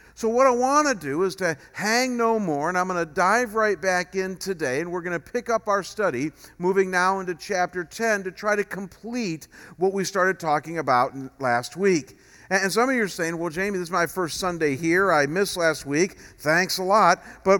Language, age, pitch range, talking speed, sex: English, 50-69, 165-205 Hz, 225 wpm, male